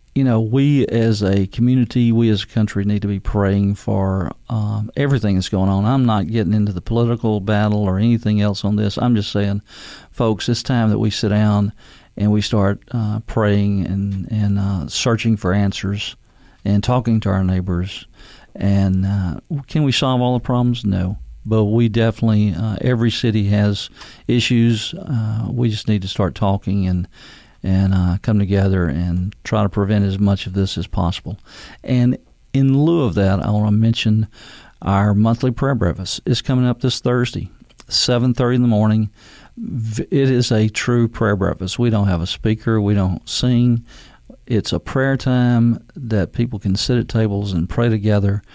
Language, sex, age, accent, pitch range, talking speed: English, male, 50-69, American, 100-120 Hz, 180 wpm